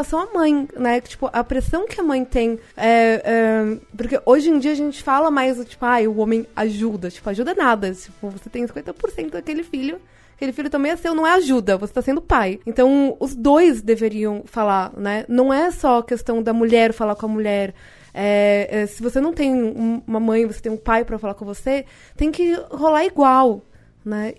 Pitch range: 215-265 Hz